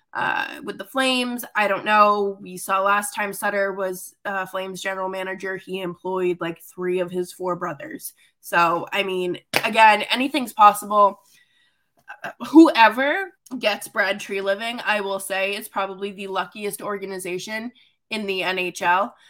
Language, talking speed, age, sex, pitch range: English, 150 wpm, 20-39, female, 195-275 Hz